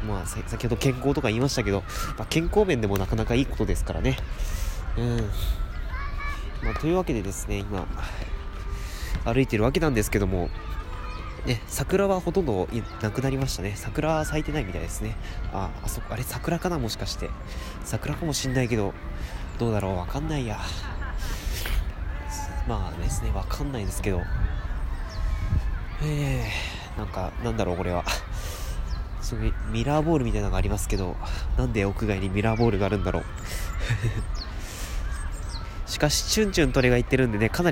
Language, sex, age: Japanese, male, 20-39